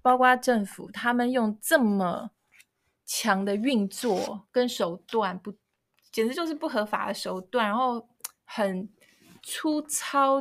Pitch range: 190-250 Hz